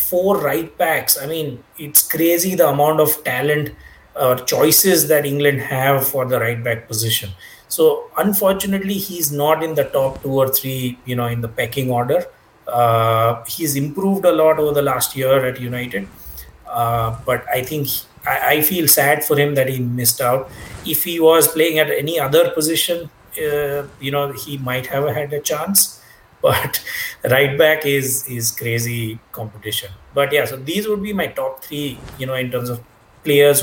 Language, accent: English, Indian